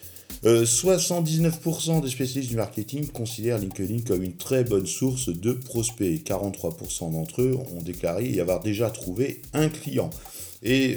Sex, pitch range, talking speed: male, 95-130 Hz, 150 wpm